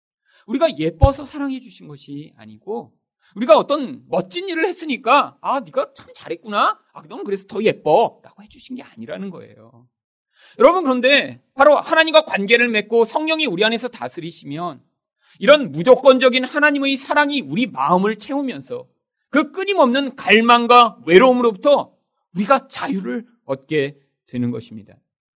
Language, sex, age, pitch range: Korean, male, 40-59, 170-265 Hz